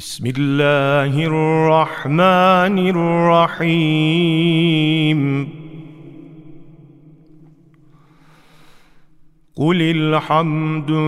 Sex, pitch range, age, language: male, 155-205 Hz, 40-59, Turkish